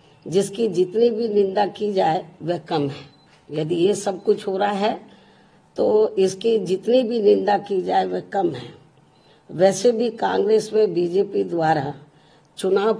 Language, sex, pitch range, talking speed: Hindi, female, 180-215 Hz, 150 wpm